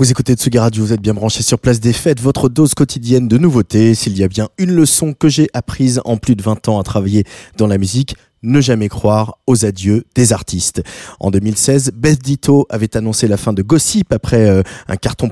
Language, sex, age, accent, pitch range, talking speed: French, male, 20-39, French, 110-145 Hz, 225 wpm